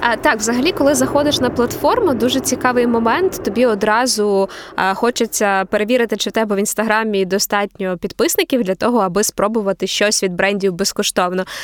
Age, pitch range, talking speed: 20-39, 205-255 Hz, 155 wpm